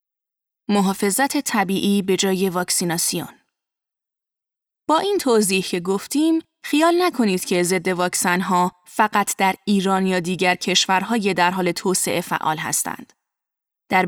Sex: female